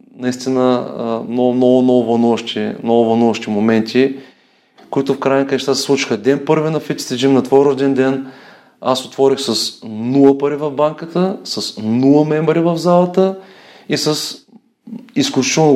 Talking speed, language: 130 wpm, Bulgarian